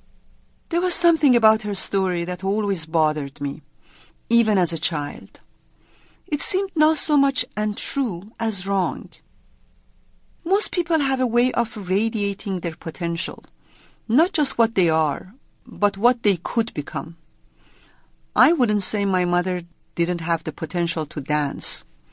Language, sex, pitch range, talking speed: English, female, 170-240 Hz, 140 wpm